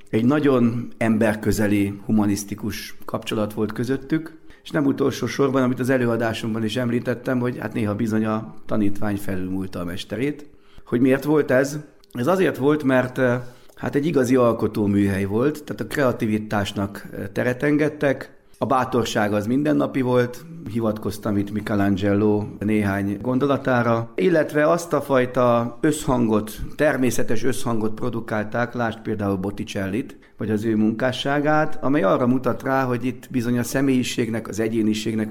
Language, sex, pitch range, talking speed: Hungarian, male, 105-130 Hz, 135 wpm